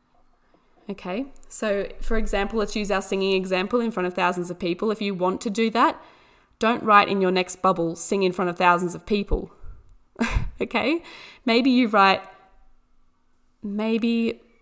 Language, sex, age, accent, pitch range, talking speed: English, female, 20-39, Australian, 180-225 Hz, 160 wpm